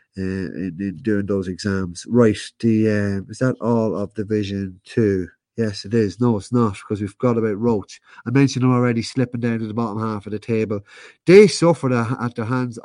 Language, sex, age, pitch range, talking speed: English, male, 30-49, 105-125 Hz, 215 wpm